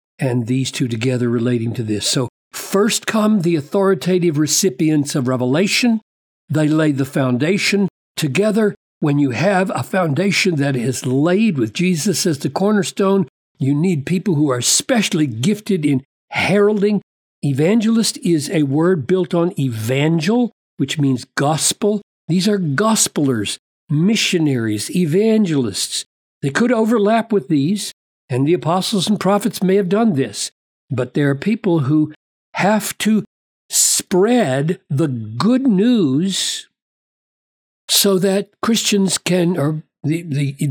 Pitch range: 140-205 Hz